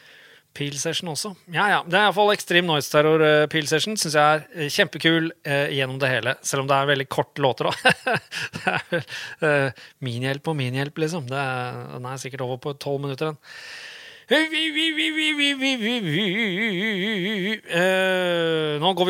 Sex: male